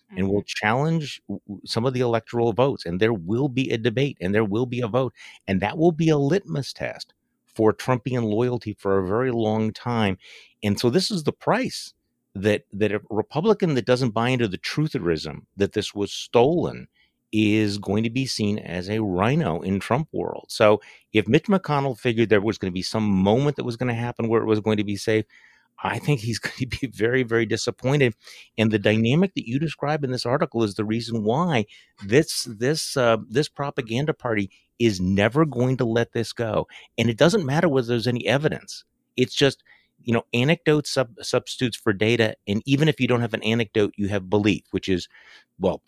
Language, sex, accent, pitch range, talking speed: English, male, American, 105-130 Hz, 205 wpm